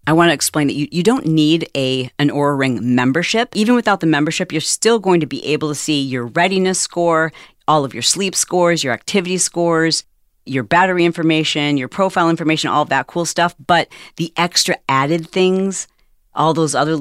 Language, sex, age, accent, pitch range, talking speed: English, female, 40-59, American, 140-170 Hz, 200 wpm